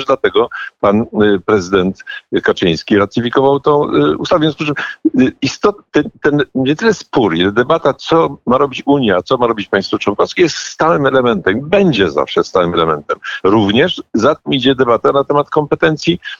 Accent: native